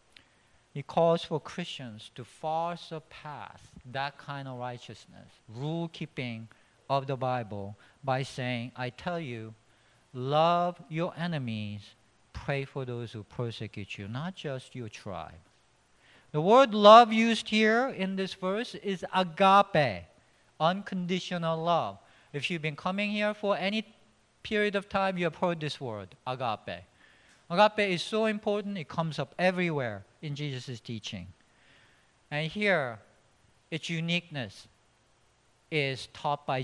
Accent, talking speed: Japanese, 130 wpm